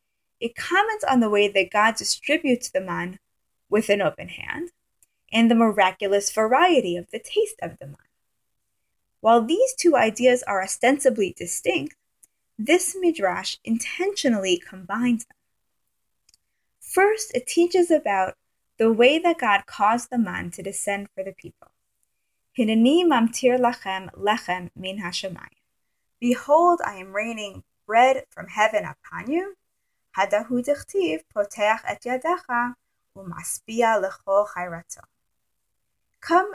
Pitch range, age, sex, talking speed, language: 195-285 Hz, 20-39, female, 100 wpm, English